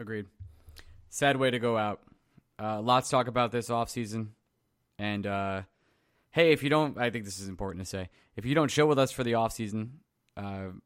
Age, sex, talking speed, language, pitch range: 20-39, male, 205 wpm, English, 100-125 Hz